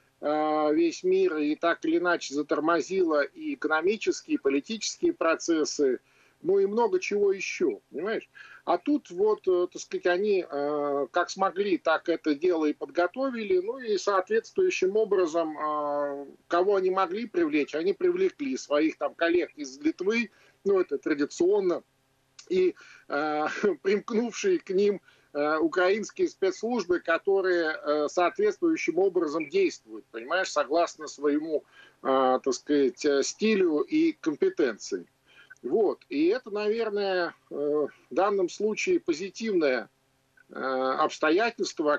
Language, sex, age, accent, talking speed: Russian, male, 50-69, native, 110 wpm